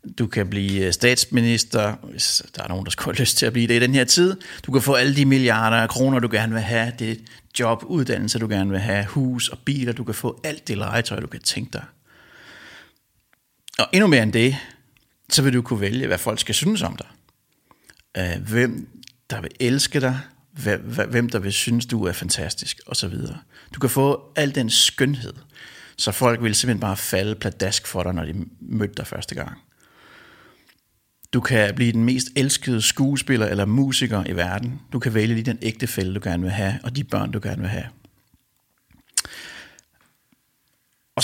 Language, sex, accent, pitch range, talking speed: English, male, Danish, 105-130 Hz, 195 wpm